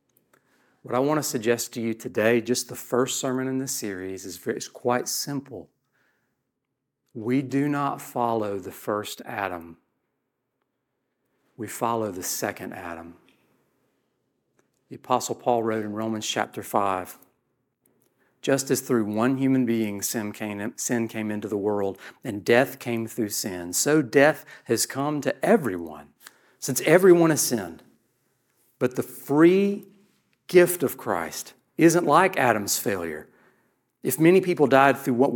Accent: American